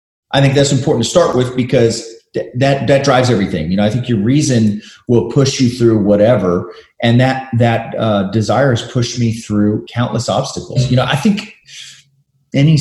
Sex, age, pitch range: male, 30-49, 105-140 Hz